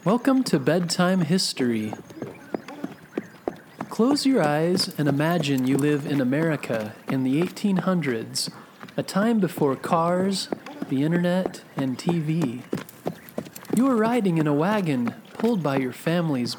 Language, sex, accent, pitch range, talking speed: English, male, American, 140-200 Hz, 125 wpm